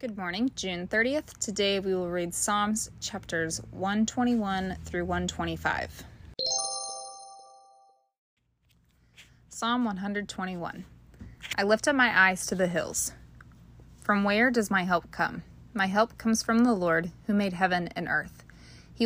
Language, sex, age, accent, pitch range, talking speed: English, female, 20-39, American, 170-215 Hz, 130 wpm